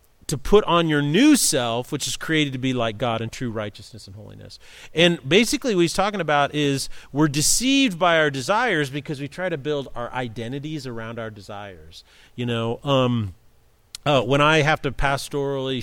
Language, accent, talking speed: English, American, 185 wpm